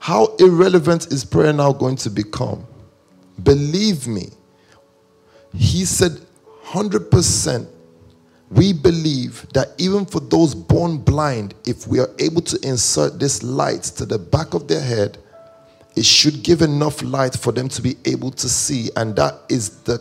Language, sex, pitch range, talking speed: English, male, 105-150 Hz, 155 wpm